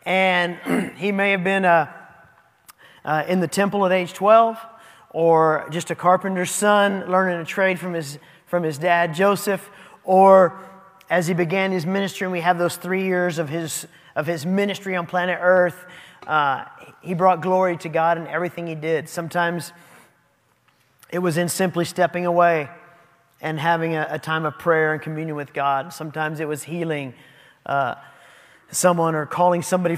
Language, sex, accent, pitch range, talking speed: English, male, American, 155-185 Hz, 170 wpm